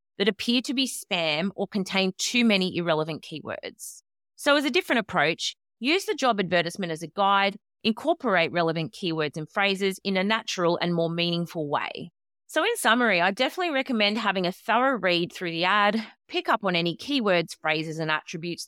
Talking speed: 180 wpm